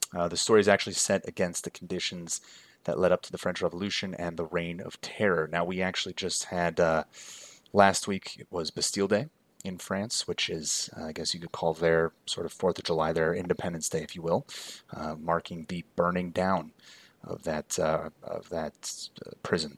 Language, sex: English, male